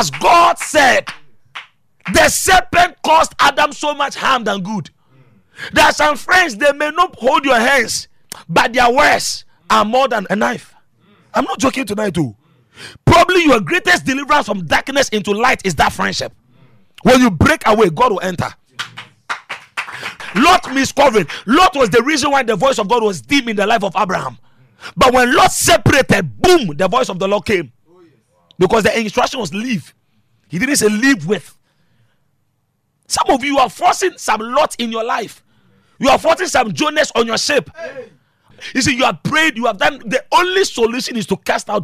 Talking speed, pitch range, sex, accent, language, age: 180 wpm, 190-295 Hz, male, Nigerian, English, 40-59